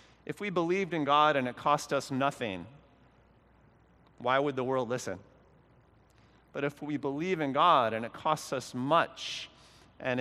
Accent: American